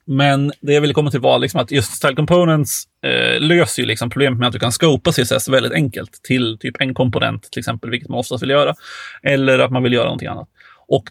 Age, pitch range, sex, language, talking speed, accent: 30-49, 125-155 Hz, male, Swedish, 240 wpm, native